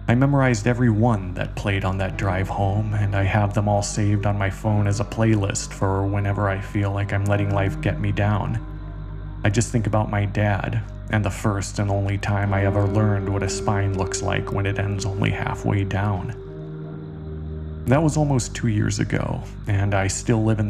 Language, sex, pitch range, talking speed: English, male, 100-110 Hz, 205 wpm